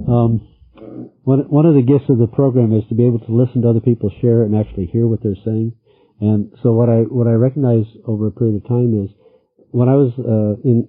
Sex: male